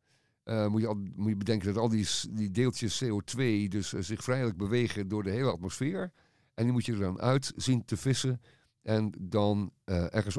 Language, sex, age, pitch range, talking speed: Dutch, male, 50-69, 95-125 Hz, 210 wpm